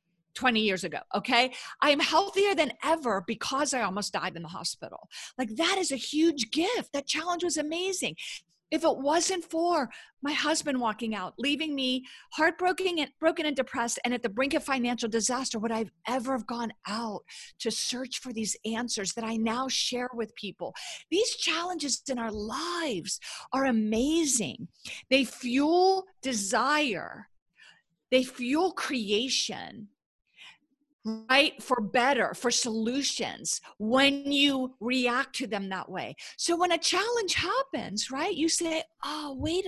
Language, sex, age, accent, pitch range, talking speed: English, female, 50-69, American, 230-315 Hz, 150 wpm